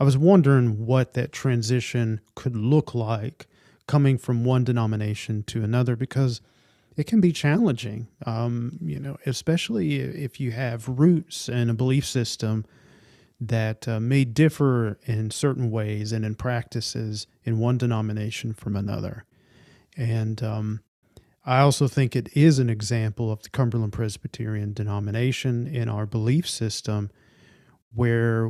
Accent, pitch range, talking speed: American, 110-135 Hz, 140 wpm